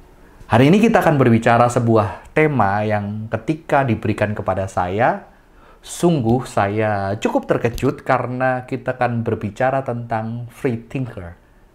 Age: 30-49